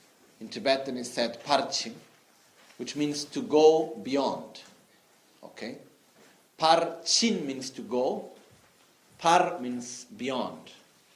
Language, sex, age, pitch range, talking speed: Italian, male, 50-69, 135-170 Hz, 95 wpm